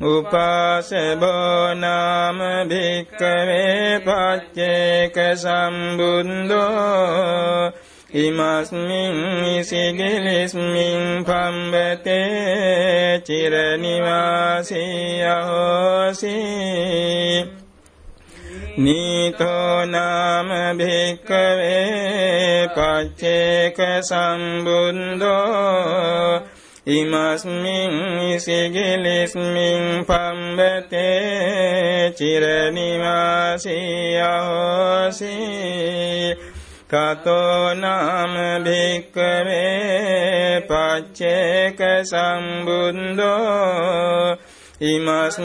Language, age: Vietnamese, 60-79